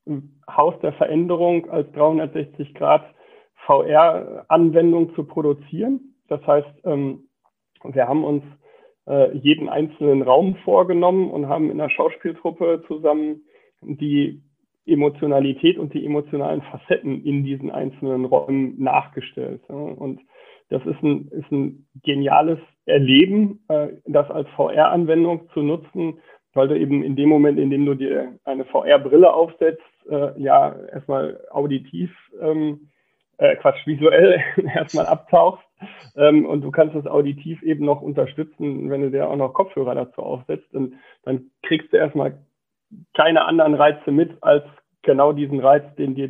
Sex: male